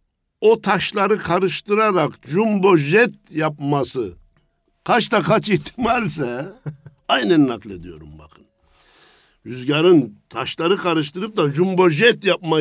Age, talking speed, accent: 60-79, 95 wpm, native